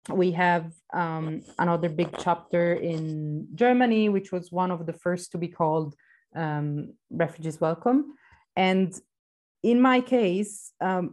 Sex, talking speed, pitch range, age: female, 135 wpm, 165-195 Hz, 30-49